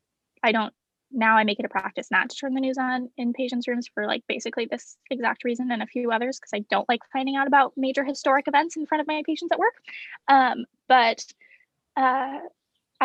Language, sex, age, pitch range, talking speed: English, female, 20-39, 230-275 Hz, 215 wpm